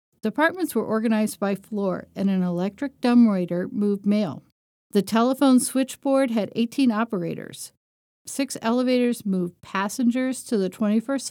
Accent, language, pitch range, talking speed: American, English, 195-240 Hz, 125 wpm